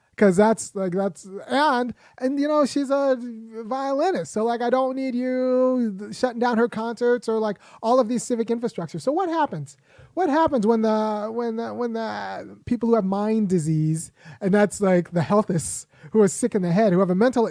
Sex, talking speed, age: male, 200 wpm, 30-49